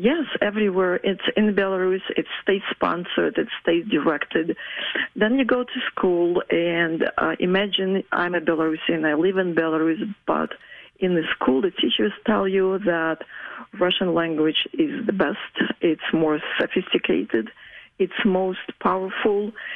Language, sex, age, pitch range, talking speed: English, female, 40-59, 165-205 Hz, 140 wpm